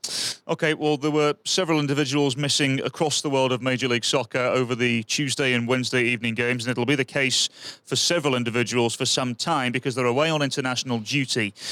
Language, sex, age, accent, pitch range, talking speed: English, male, 30-49, British, 125-145 Hz, 195 wpm